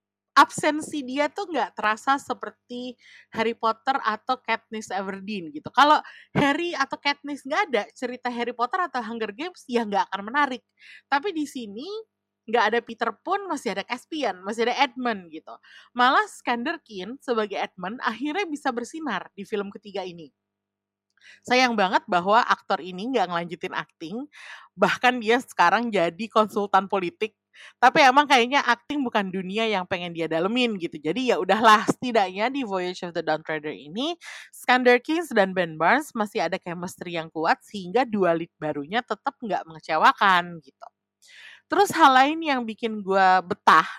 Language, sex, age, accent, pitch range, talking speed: Indonesian, female, 30-49, native, 185-260 Hz, 155 wpm